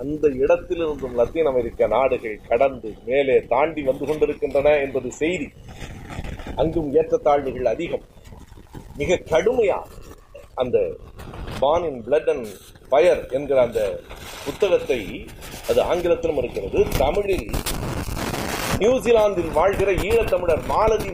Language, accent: Tamil, native